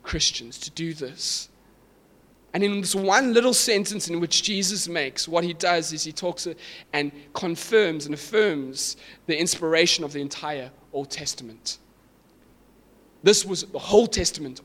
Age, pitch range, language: 20-39, 140-210 Hz, English